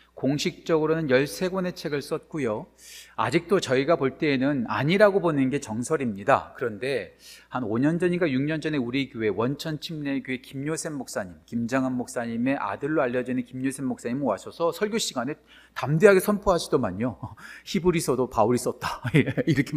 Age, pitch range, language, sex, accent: 40-59, 130-180 Hz, Korean, male, native